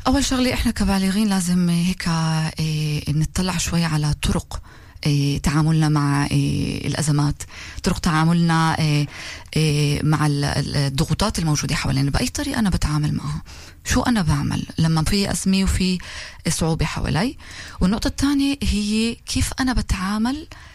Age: 20-39